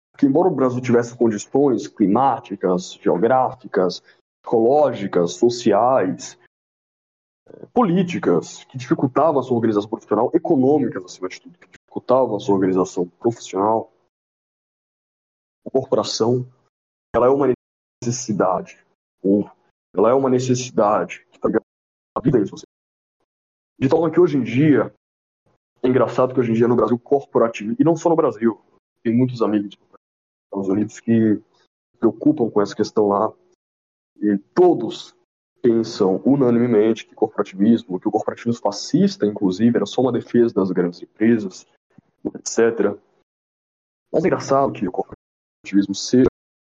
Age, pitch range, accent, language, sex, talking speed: 20-39, 95-125 Hz, Brazilian, Portuguese, male, 130 wpm